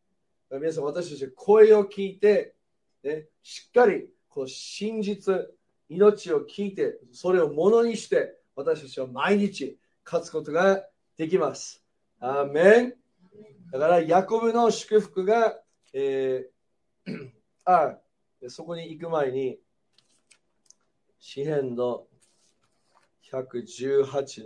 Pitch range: 140-225 Hz